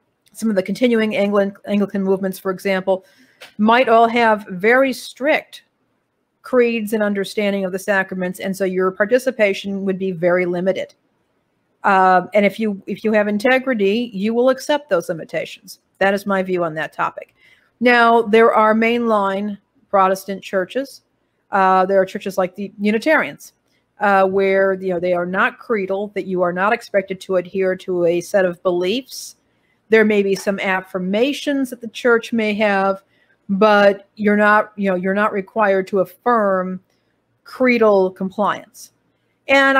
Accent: American